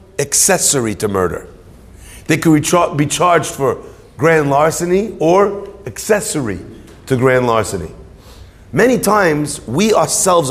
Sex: male